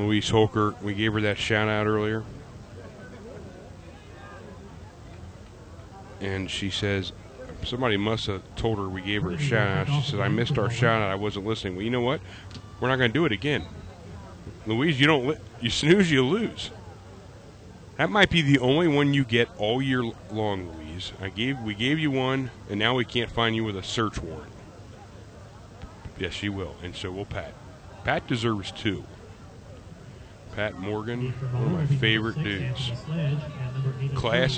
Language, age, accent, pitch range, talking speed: English, 30-49, American, 100-130 Hz, 170 wpm